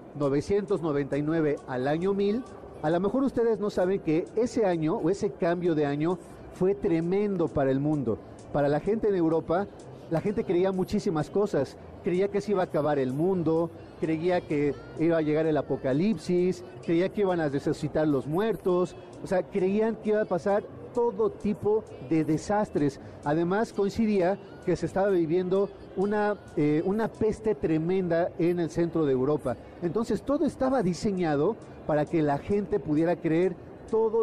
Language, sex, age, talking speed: Spanish, male, 40-59, 165 wpm